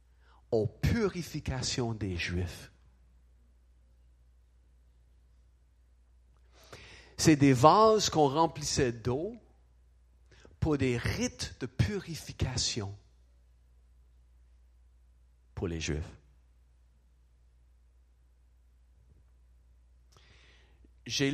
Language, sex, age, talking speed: French, male, 50-69, 55 wpm